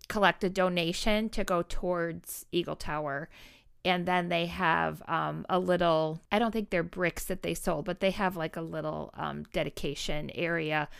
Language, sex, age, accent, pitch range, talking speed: English, female, 40-59, American, 160-190 Hz, 175 wpm